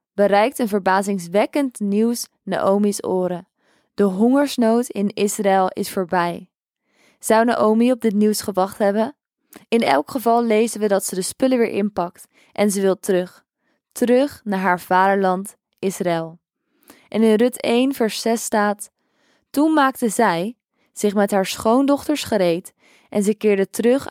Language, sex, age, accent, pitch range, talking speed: Dutch, female, 20-39, Dutch, 195-235 Hz, 145 wpm